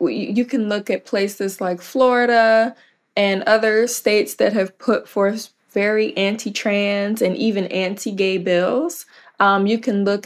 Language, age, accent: English, 20-39, American